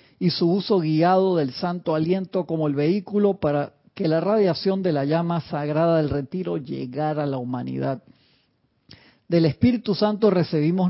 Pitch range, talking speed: 150-185 Hz, 155 wpm